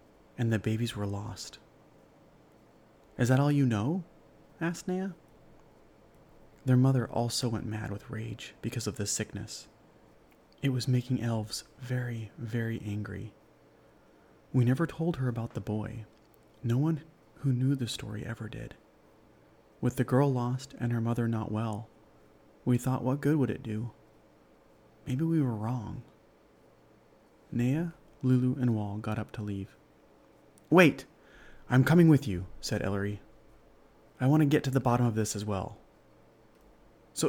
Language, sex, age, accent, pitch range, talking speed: English, male, 30-49, American, 110-135 Hz, 150 wpm